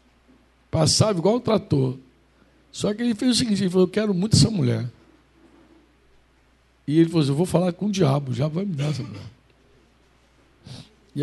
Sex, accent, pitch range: male, Brazilian, 135-185 Hz